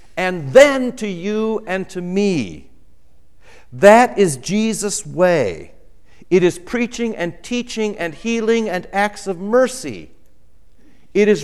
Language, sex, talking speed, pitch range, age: English, male, 125 wpm, 110-170 Hz, 60-79